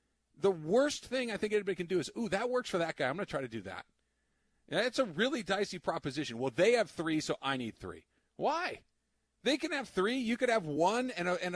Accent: American